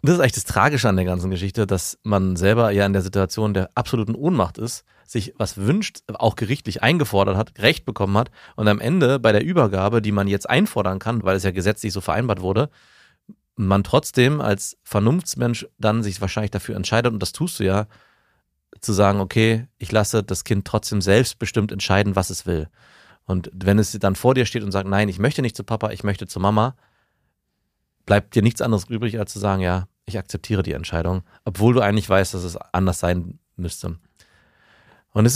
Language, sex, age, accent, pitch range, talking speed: German, male, 30-49, German, 95-120 Hz, 200 wpm